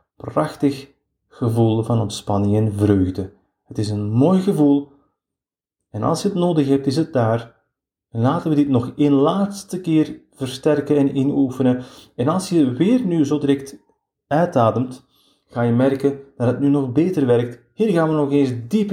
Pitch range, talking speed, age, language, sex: 115-150 Hz, 170 wpm, 30-49, English, male